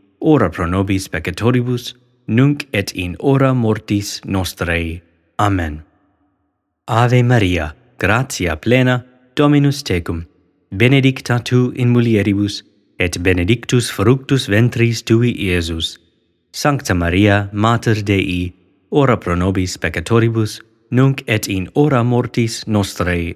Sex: male